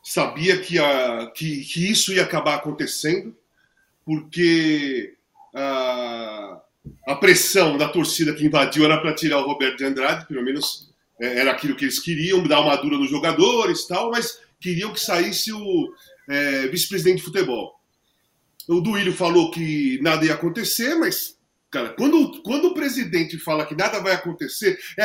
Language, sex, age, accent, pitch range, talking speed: Portuguese, male, 40-59, Brazilian, 170-260 Hz, 155 wpm